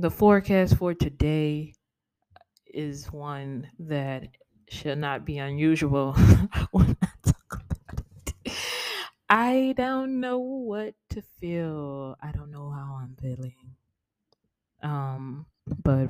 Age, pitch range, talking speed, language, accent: 20-39, 130-155 Hz, 110 wpm, English, American